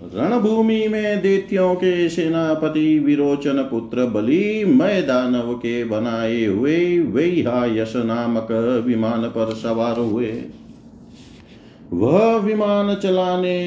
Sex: male